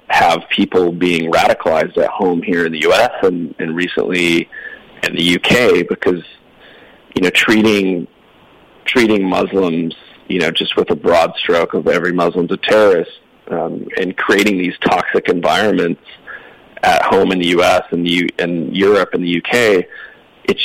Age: 30-49